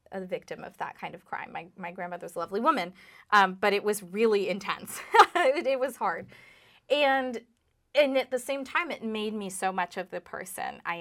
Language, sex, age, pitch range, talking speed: English, female, 20-39, 175-220 Hz, 205 wpm